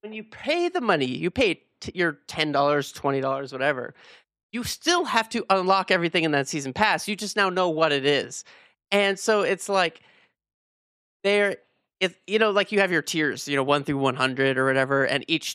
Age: 30-49